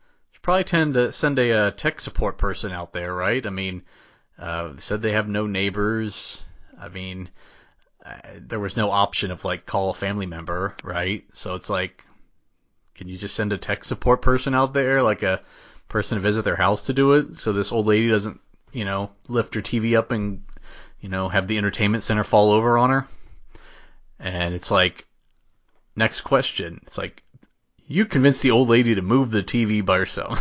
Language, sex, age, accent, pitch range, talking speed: English, male, 30-49, American, 95-125 Hz, 195 wpm